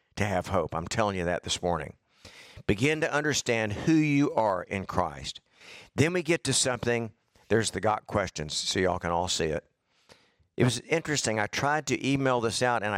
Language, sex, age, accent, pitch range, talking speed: English, male, 50-69, American, 95-130 Hz, 195 wpm